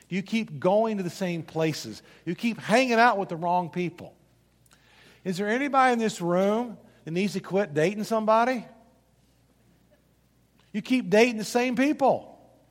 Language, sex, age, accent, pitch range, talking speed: English, male, 50-69, American, 190-255 Hz, 155 wpm